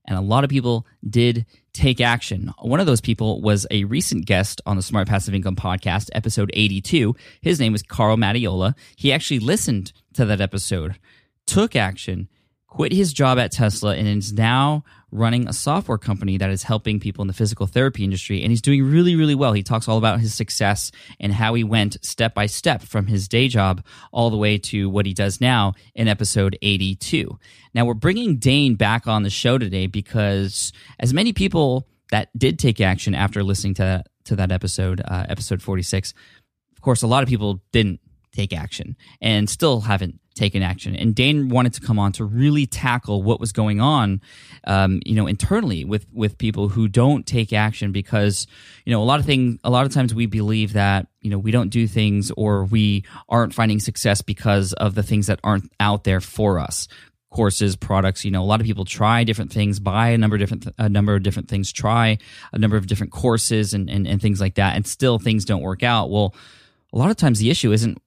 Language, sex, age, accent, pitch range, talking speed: English, male, 20-39, American, 100-120 Hz, 210 wpm